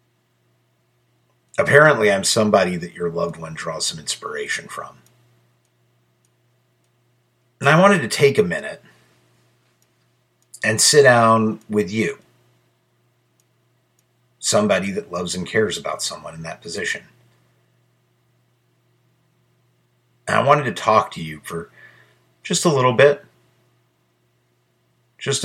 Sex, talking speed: male, 110 wpm